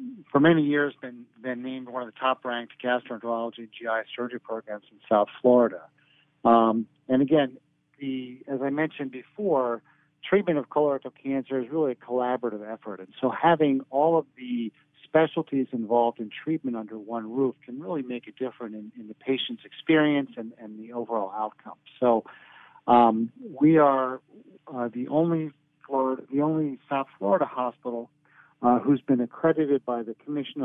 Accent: American